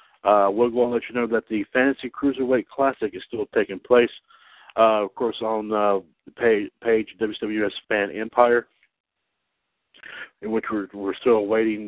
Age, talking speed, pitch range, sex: 60-79, 165 wpm, 100-115 Hz, male